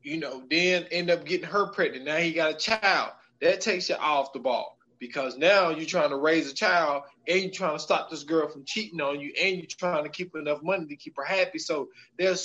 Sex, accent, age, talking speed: male, American, 20-39, 245 wpm